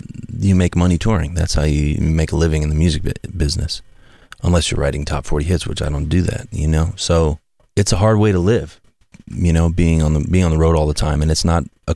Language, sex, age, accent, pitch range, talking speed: English, male, 30-49, American, 80-105 Hz, 250 wpm